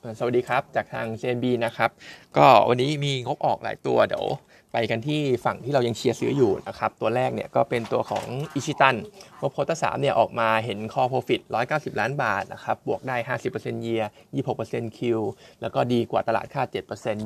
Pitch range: 115-145 Hz